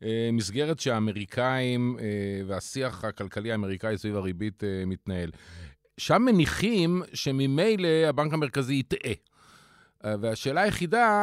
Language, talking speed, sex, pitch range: Hebrew, 85 wpm, male, 115-165 Hz